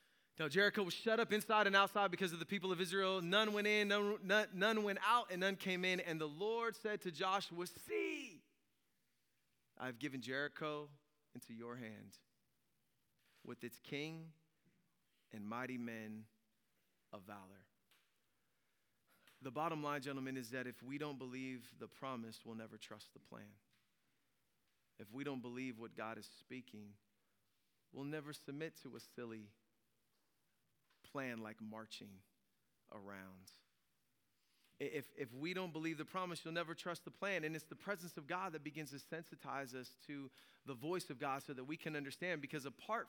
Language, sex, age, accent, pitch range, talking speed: English, male, 20-39, American, 125-190 Hz, 165 wpm